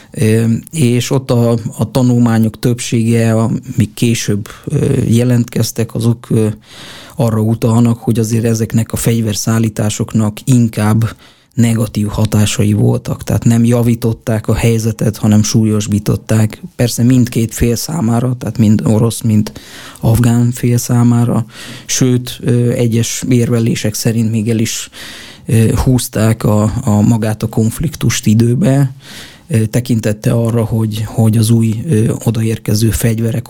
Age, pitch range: 20-39, 110-120 Hz